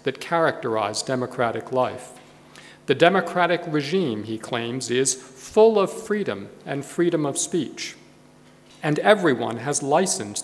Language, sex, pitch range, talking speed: English, male, 125-175 Hz, 120 wpm